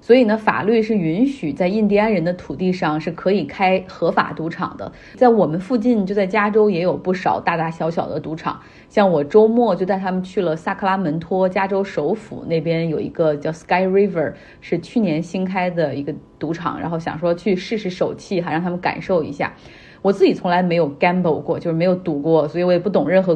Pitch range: 165-210 Hz